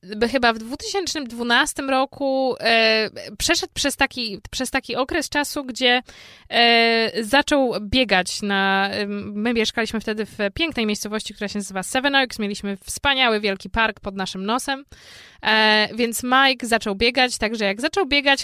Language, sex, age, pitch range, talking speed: Polish, female, 20-39, 215-270 Hz, 130 wpm